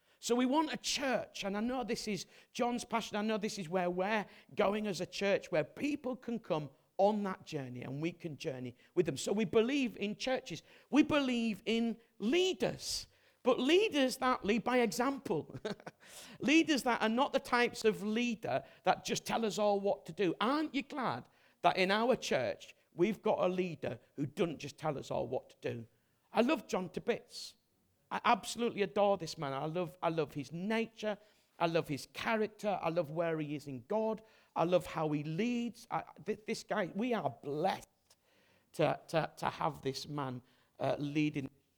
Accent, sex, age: British, male, 50-69